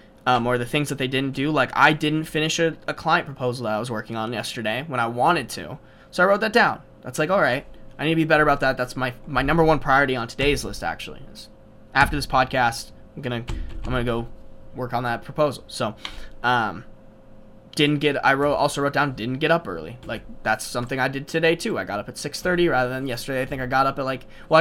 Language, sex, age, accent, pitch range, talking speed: English, male, 20-39, American, 120-155 Hz, 245 wpm